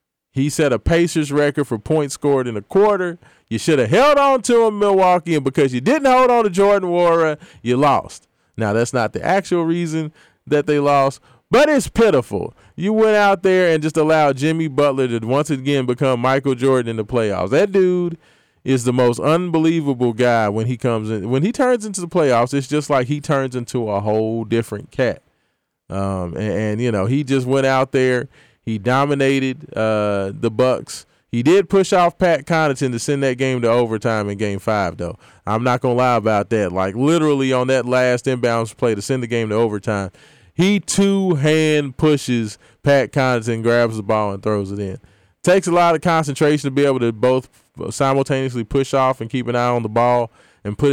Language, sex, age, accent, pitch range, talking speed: English, male, 20-39, American, 115-155 Hz, 205 wpm